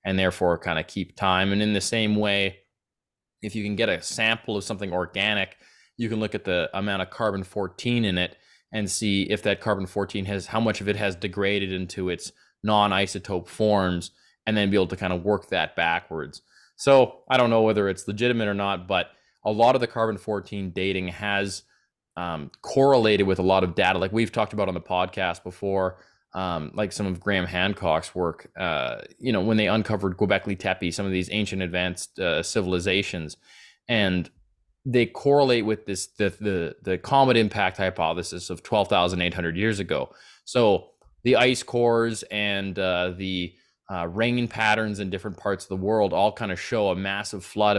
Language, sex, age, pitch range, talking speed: English, male, 20-39, 95-105 Hz, 195 wpm